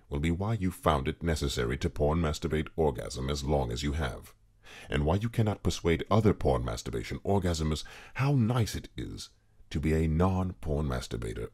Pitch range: 80-105 Hz